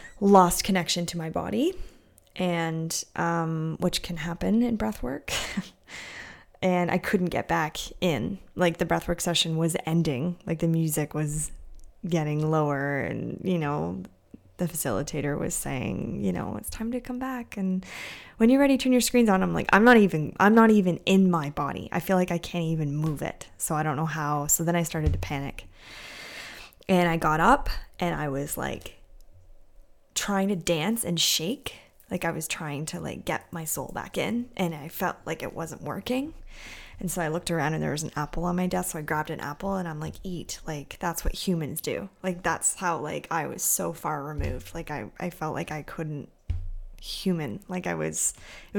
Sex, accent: female, American